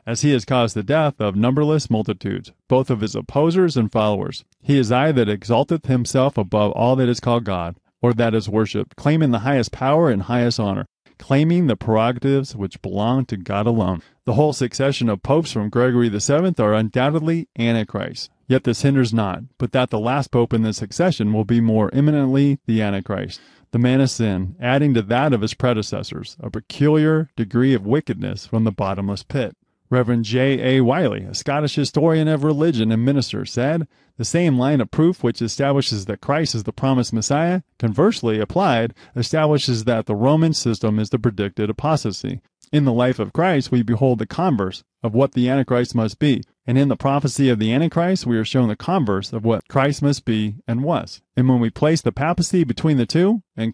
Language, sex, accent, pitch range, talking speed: English, male, American, 110-140 Hz, 195 wpm